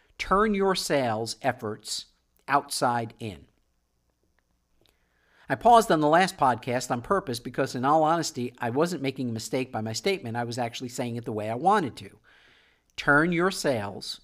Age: 50-69